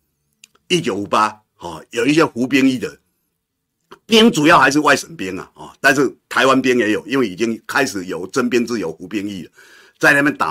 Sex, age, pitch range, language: male, 50-69, 120-185 Hz, Chinese